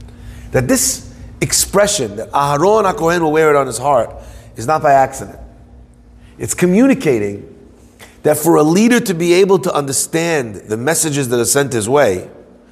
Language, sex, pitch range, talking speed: English, male, 120-180 Hz, 160 wpm